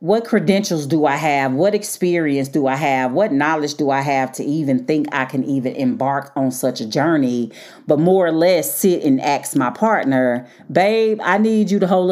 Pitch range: 135-195 Hz